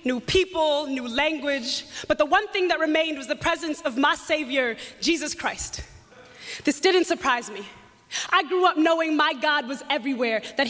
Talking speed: 175 wpm